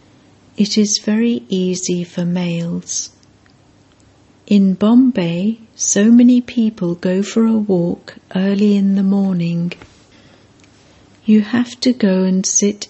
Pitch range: 170-205 Hz